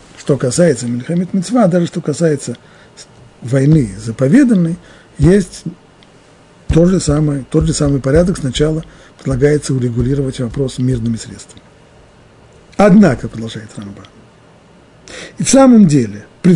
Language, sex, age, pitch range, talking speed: Russian, male, 50-69, 130-170 Hz, 115 wpm